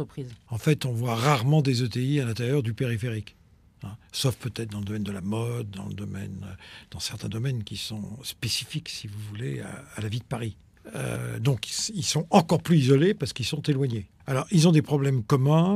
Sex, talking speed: male, 210 wpm